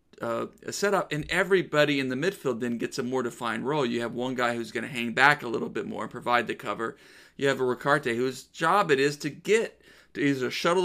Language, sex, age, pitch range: English, male, 40-59, 125-160 Hz